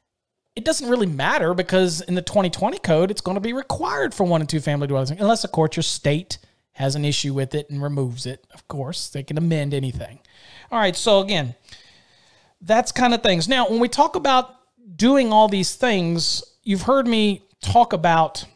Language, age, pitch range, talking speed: English, 40-59, 160-200 Hz, 195 wpm